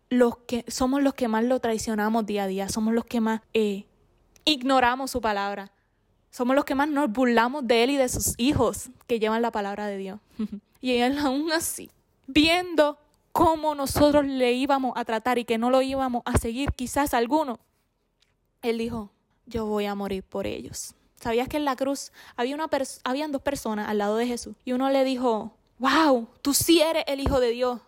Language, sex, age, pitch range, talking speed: Spanish, female, 20-39, 215-265 Hz, 200 wpm